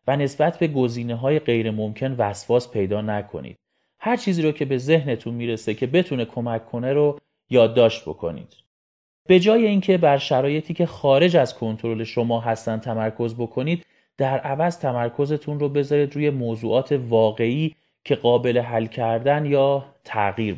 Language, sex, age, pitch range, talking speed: Persian, male, 30-49, 120-155 Hz, 145 wpm